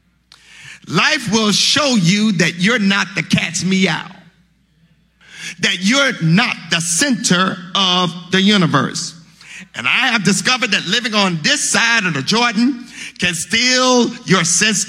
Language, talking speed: English, 135 wpm